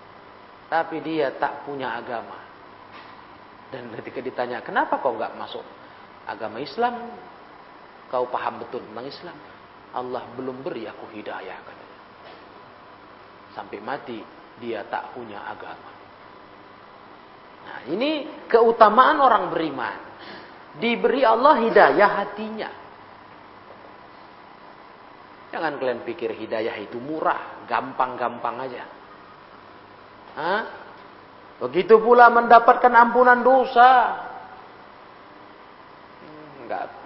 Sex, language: male, Indonesian